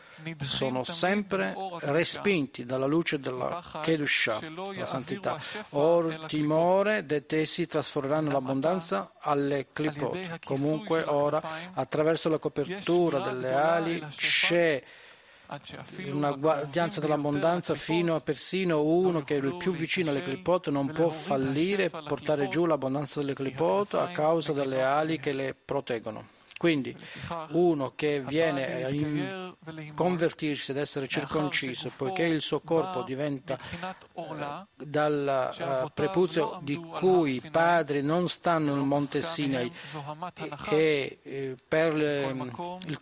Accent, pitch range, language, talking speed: native, 145-170 Hz, Italian, 125 wpm